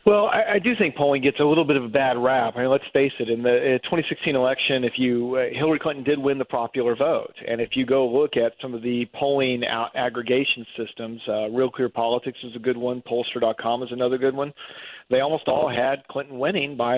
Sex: male